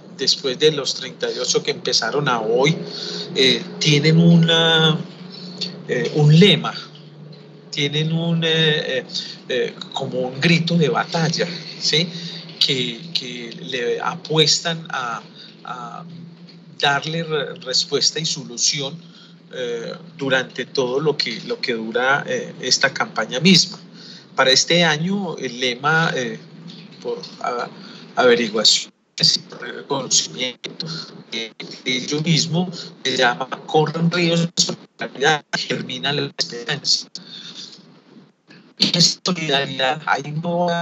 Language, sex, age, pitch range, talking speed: Spanish, male, 40-59, 150-185 Hz, 115 wpm